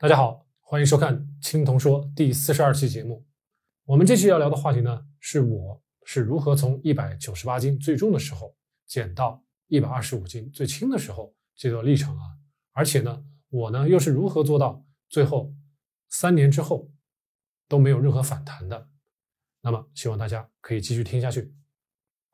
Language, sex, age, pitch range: Chinese, male, 20-39, 130-155 Hz